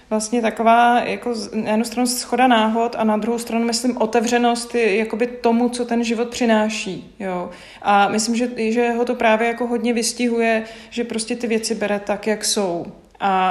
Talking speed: 180 wpm